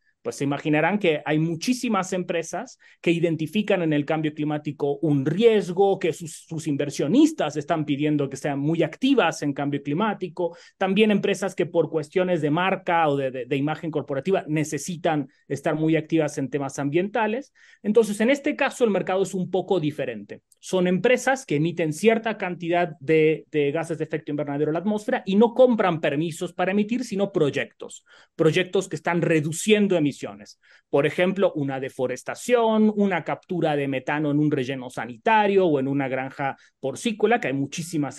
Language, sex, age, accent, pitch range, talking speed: Spanish, male, 30-49, Mexican, 150-195 Hz, 165 wpm